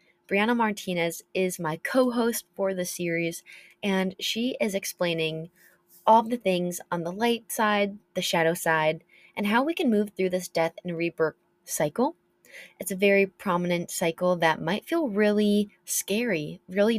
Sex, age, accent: female, 20-39, American